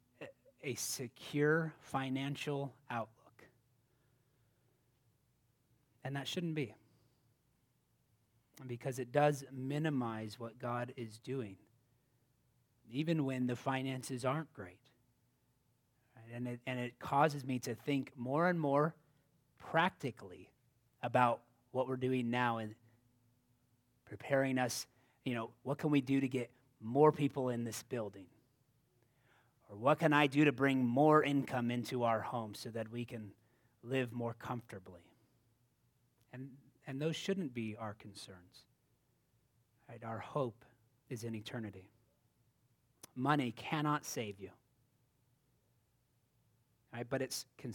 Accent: American